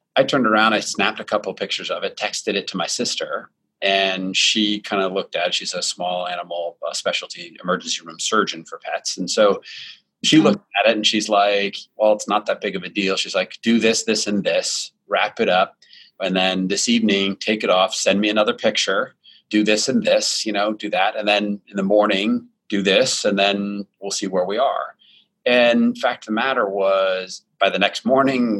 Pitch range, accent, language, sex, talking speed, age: 95-110 Hz, American, English, male, 215 wpm, 30-49